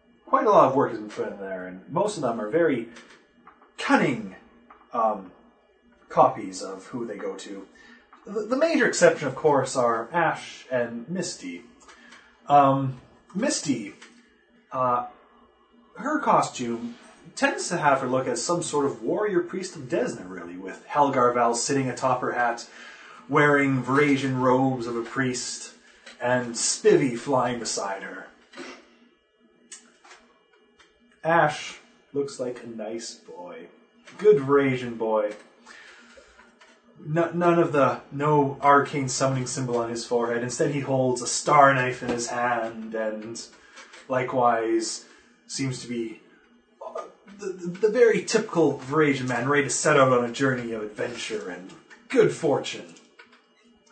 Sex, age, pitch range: male, 30-49, 120-165 Hz